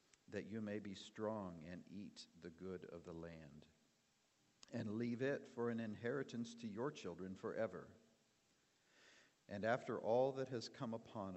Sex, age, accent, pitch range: male, 50-69, American, 95-115 Hz